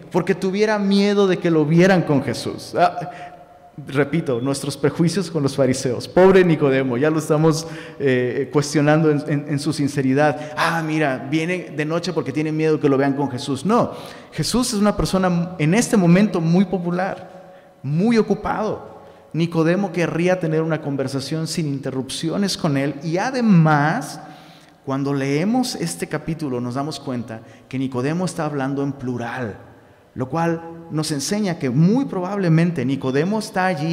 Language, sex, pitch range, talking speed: Spanish, male, 140-170 Hz, 155 wpm